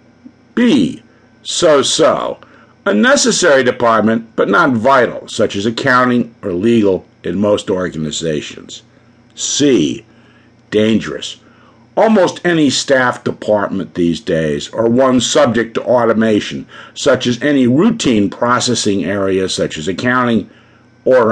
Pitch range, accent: 100-125 Hz, American